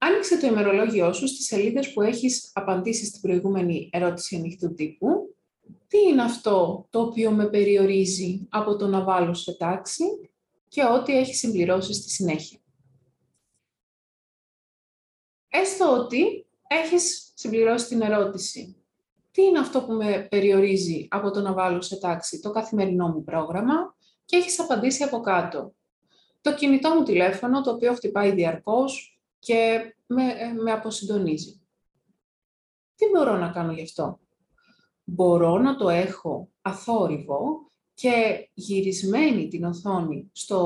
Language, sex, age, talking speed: Greek, female, 20-39, 125 wpm